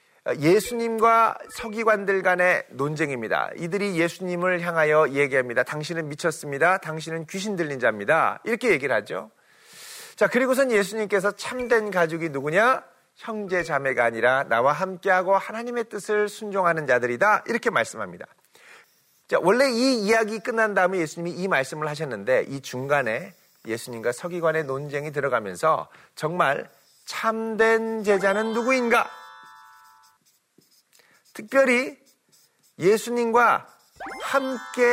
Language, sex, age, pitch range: Korean, male, 40-59, 155-225 Hz